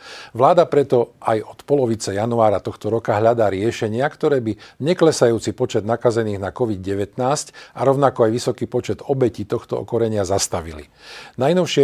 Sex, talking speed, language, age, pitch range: male, 135 wpm, Slovak, 50-69, 110-130 Hz